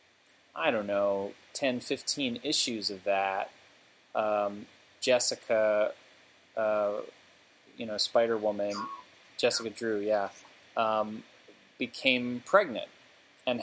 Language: English